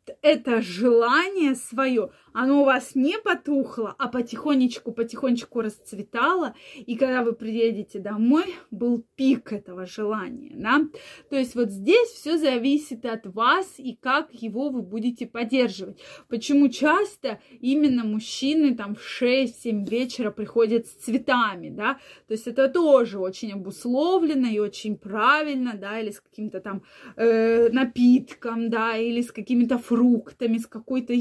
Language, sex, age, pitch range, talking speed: Russian, female, 20-39, 225-280 Hz, 135 wpm